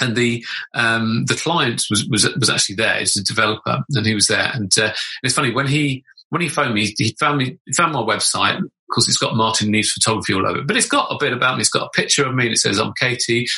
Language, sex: English, male